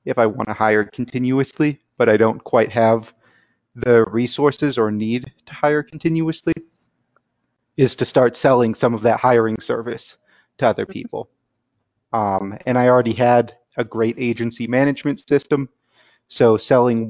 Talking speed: 145 wpm